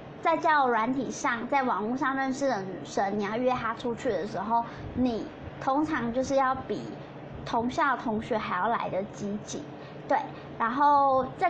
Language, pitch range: Chinese, 235-290 Hz